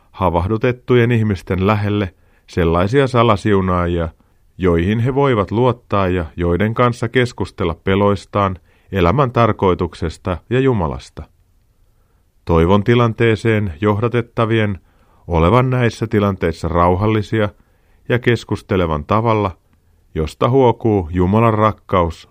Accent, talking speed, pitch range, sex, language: native, 85 wpm, 85-115 Hz, male, Finnish